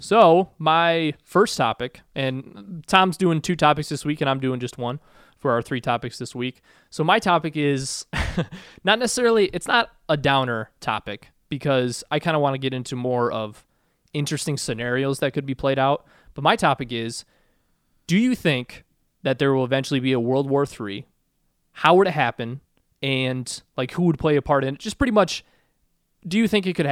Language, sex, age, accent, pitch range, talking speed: English, male, 20-39, American, 125-160 Hz, 195 wpm